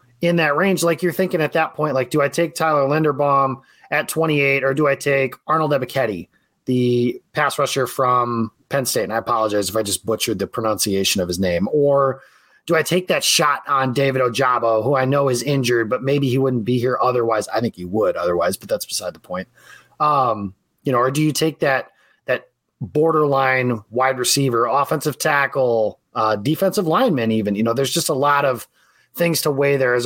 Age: 30-49